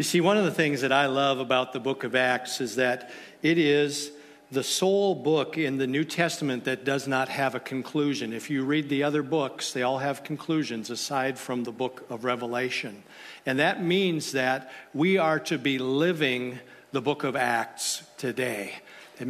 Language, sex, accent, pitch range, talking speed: English, male, American, 130-160 Hz, 195 wpm